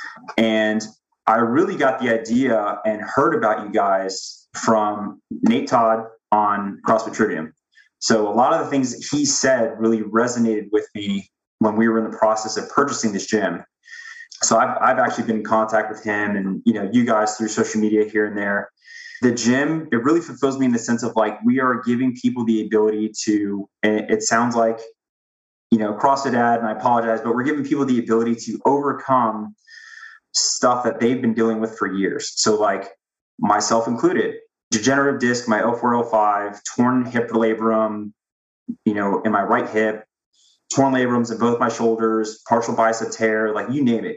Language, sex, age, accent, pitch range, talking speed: English, male, 20-39, American, 110-125 Hz, 185 wpm